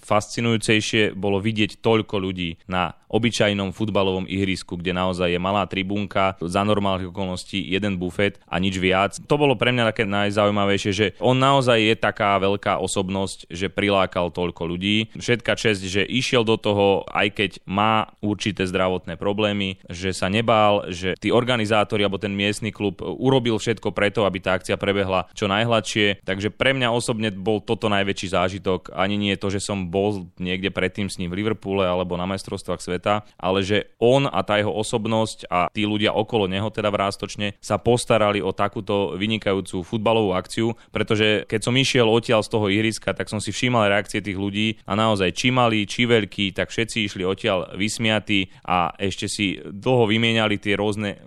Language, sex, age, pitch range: Slovak, male, 20-39, 95-110 Hz